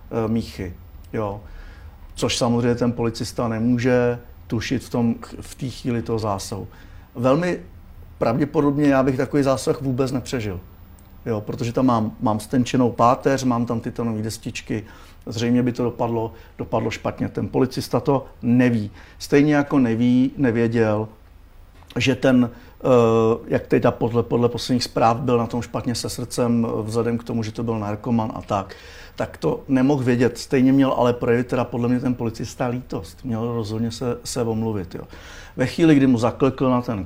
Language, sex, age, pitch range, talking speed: Czech, male, 50-69, 110-125 Hz, 160 wpm